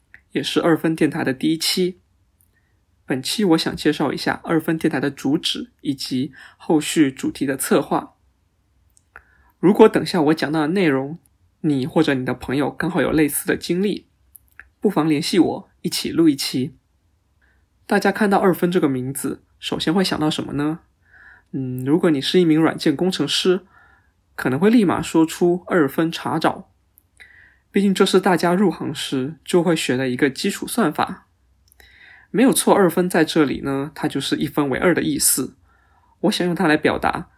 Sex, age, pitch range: male, 20-39, 135-180 Hz